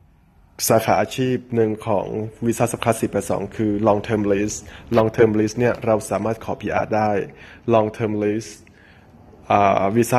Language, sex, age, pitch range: Thai, male, 20-39, 105-115 Hz